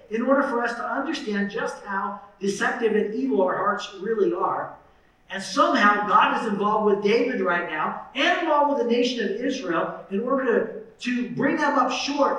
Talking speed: 190 wpm